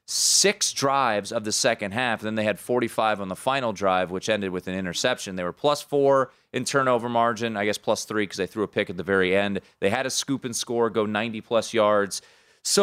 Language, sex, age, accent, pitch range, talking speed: English, male, 30-49, American, 110-140 Hz, 235 wpm